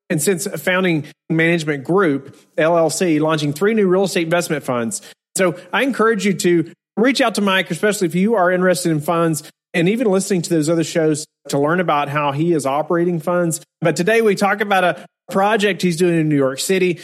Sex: male